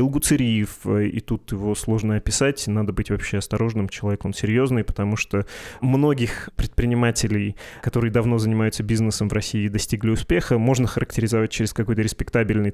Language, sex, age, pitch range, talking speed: Russian, male, 20-39, 105-120 Hz, 140 wpm